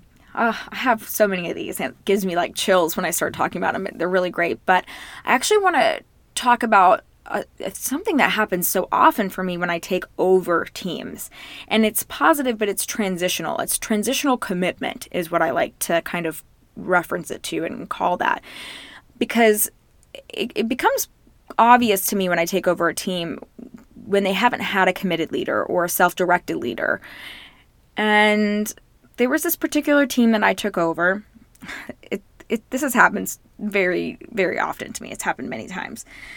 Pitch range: 185-250 Hz